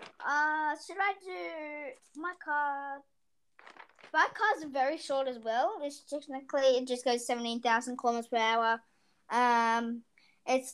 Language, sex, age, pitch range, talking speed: English, female, 20-39, 240-310 Hz, 130 wpm